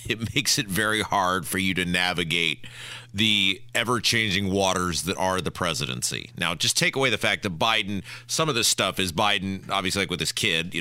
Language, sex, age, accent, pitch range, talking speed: English, male, 40-59, American, 95-130 Hz, 200 wpm